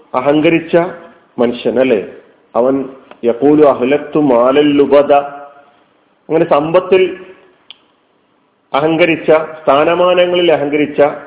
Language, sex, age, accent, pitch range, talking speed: Malayalam, male, 40-59, native, 145-180 Hz, 60 wpm